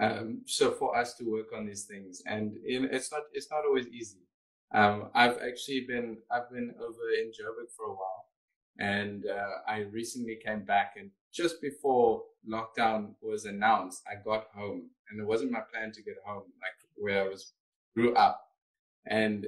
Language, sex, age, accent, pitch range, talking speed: English, male, 20-39, South African, 105-150 Hz, 180 wpm